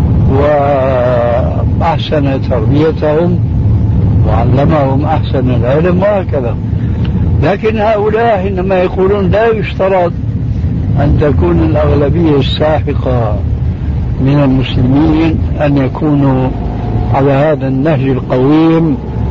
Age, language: 60-79, Arabic